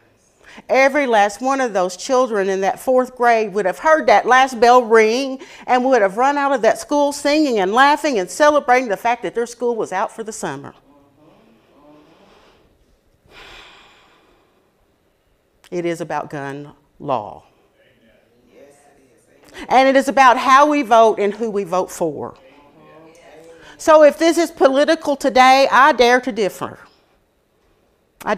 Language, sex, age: English, female, 50-69